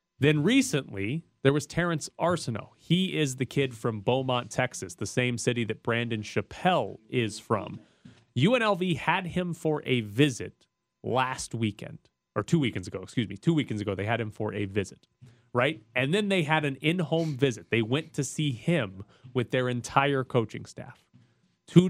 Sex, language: male, English